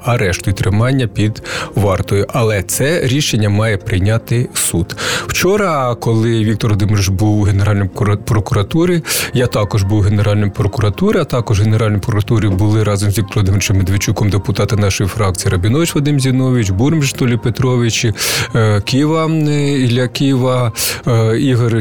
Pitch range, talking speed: 105-130 Hz, 130 wpm